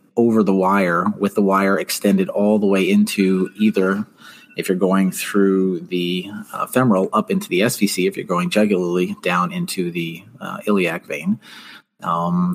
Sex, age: male, 30-49